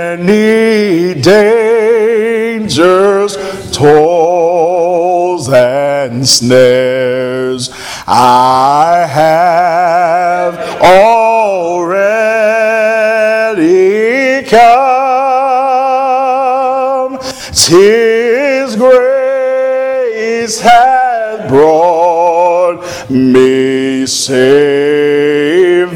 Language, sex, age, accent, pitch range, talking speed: English, male, 40-59, American, 160-225 Hz, 30 wpm